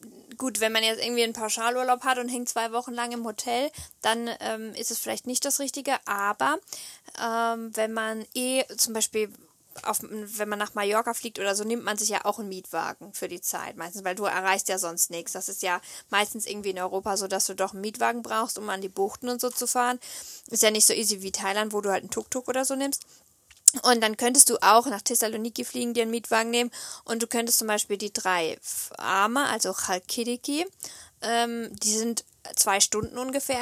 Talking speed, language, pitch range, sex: 210 wpm, German, 205-245 Hz, female